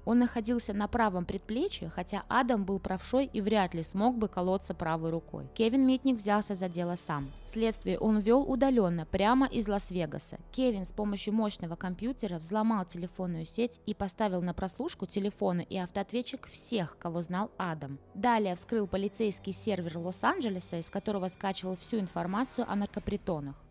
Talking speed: 155 wpm